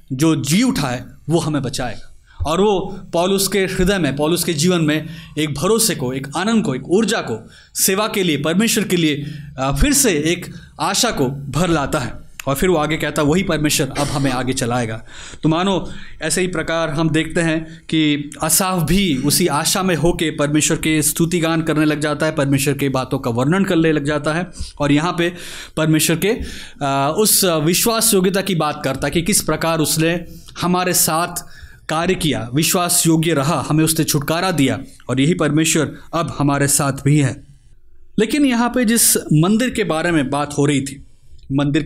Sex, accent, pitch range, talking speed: male, native, 145-180 Hz, 180 wpm